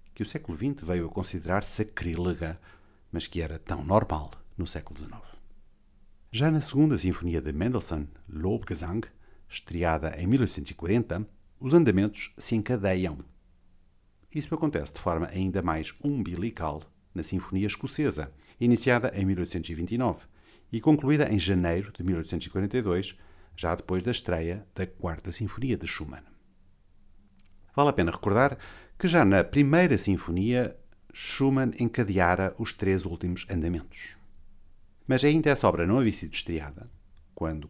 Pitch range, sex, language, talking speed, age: 85-110 Hz, male, Portuguese, 130 wpm, 50-69